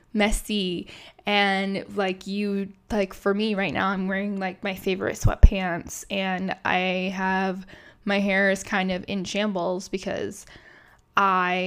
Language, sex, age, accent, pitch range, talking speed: English, female, 10-29, American, 190-215 Hz, 140 wpm